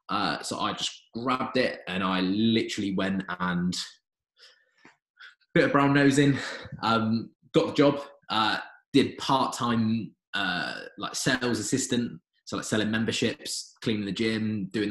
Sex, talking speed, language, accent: male, 135 wpm, English, British